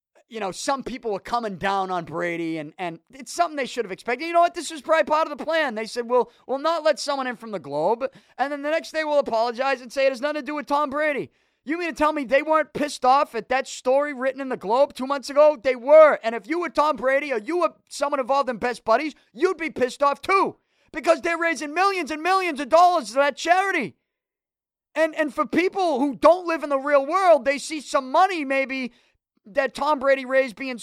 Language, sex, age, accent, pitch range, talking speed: English, male, 30-49, American, 240-320 Hz, 245 wpm